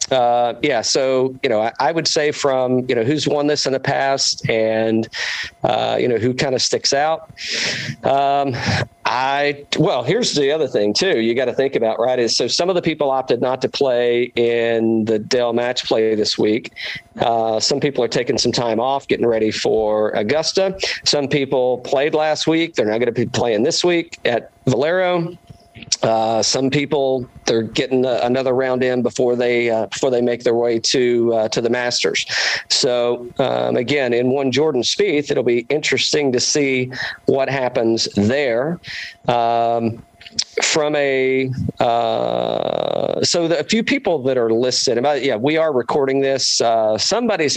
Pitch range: 115-140 Hz